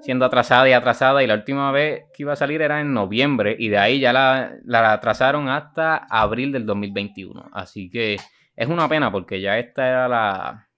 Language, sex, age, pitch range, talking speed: Spanish, male, 20-39, 105-140 Hz, 205 wpm